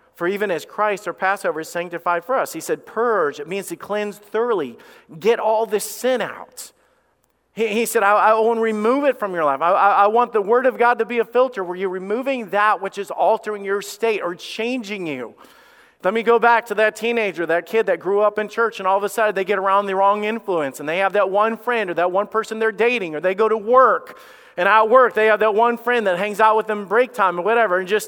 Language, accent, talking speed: English, American, 255 wpm